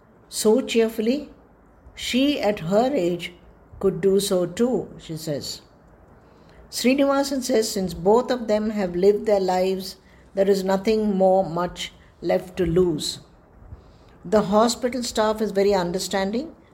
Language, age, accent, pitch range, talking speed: English, 60-79, Indian, 180-215 Hz, 130 wpm